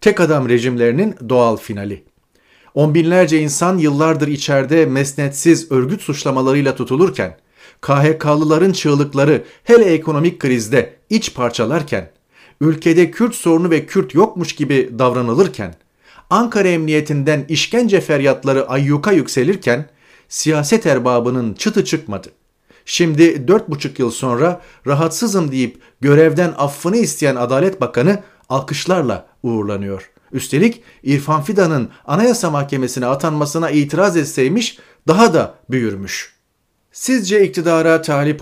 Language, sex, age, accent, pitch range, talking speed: Turkish, male, 40-59, native, 135-180 Hz, 105 wpm